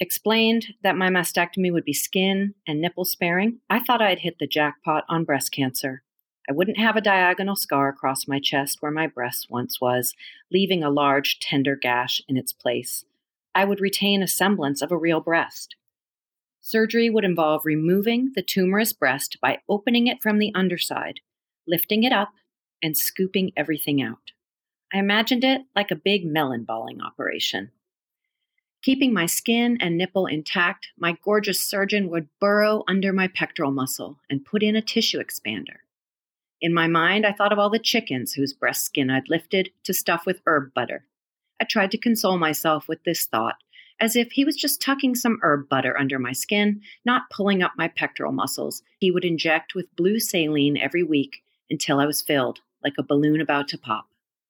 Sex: female